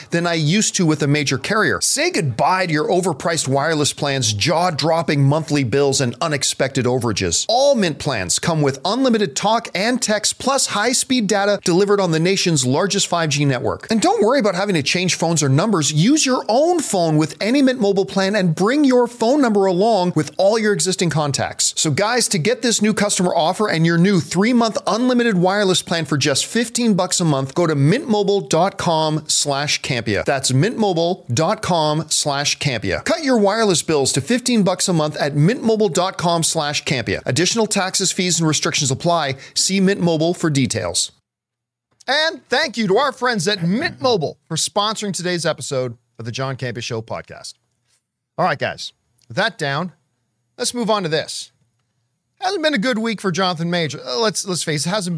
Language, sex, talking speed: English, male, 175 wpm